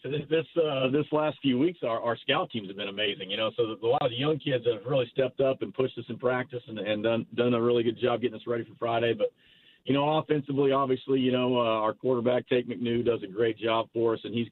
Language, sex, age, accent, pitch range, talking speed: English, male, 50-69, American, 110-125 Hz, 280 wpm